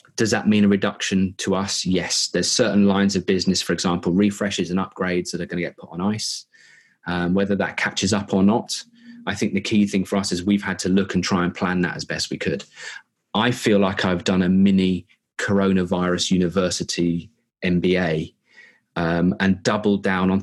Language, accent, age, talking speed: English, British, 30-49, 205 wpm